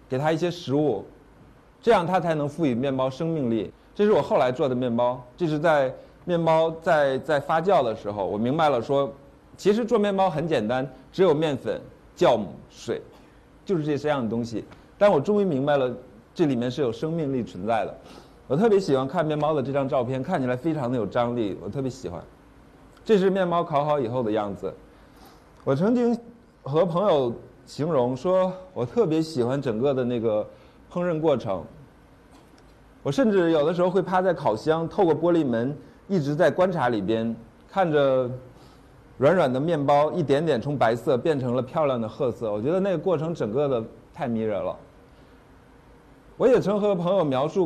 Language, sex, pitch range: Chinese, male, 125-175 Hz